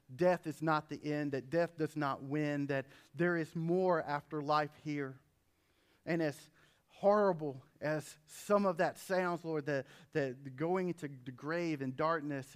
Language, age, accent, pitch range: English, 40-59, American, 130-155 Hz